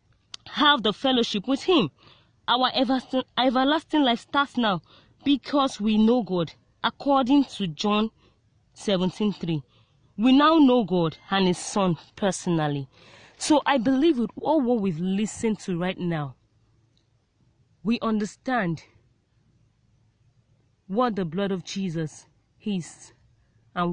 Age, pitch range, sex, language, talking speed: 30-49, 150-220 Hz, female, English, 120 wpm